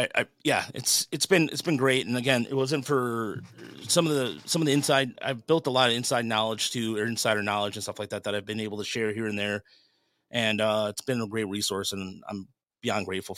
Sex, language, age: male, English, 30-49